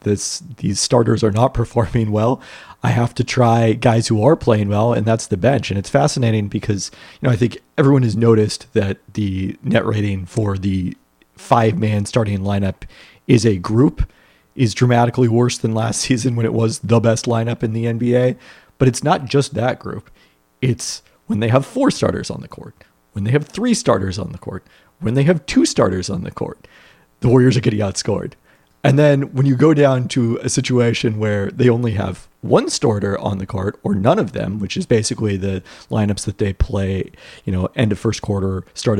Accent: American